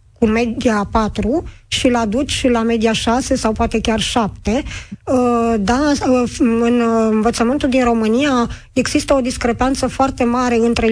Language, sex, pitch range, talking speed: Romanian, female, 225-260 Hz, 125 wpm